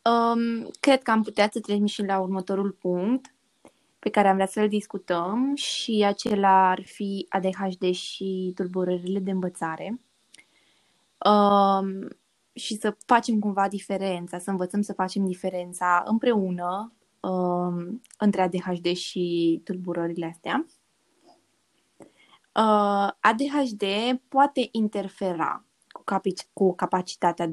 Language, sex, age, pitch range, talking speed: Romanian, female, 20-39, 185-220 Hz, 115 wpm